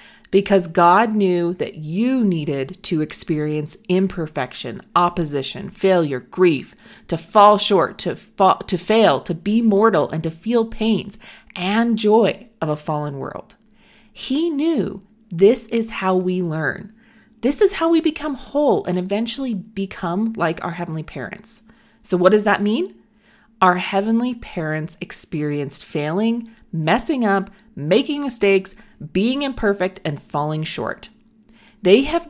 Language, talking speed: English, 135 wpm